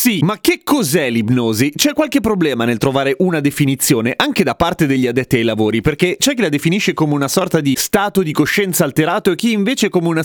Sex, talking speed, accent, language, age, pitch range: male, 215 wpm, native, Italian, 30-49, 145-200 Hz